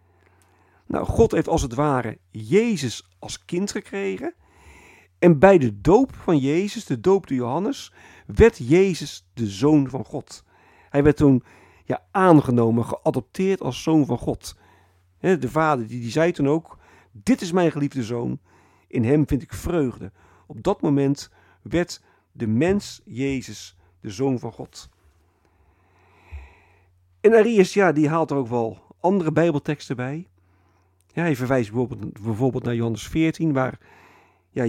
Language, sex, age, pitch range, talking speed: Dutch, male, 50-69, 95-150 Hz, 145 wpm